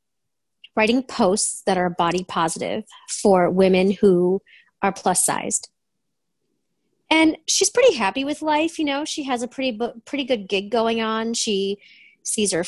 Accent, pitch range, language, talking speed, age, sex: American, 185-265 Hz, English, 145 wpm, 30-49, female